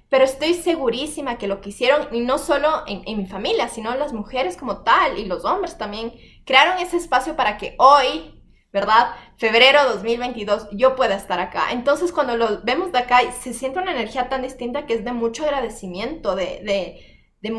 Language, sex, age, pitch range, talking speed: Spanish, female, 20-39, 215-280 Hz, 190 wpm